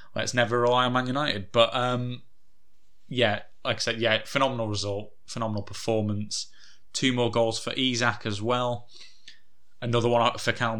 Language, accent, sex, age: English, British, male, 20-39